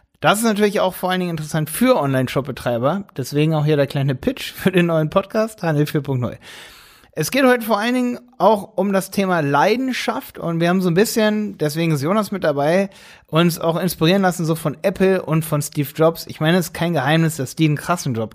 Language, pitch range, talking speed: German, 140-180 Hz, 215 wpm